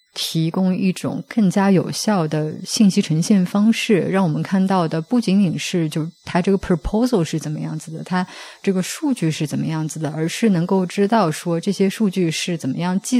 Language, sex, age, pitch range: Chinese, female, 20-39, 155-190 Hz